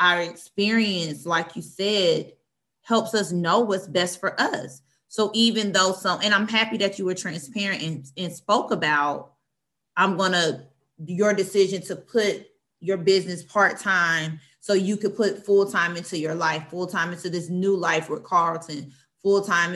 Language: English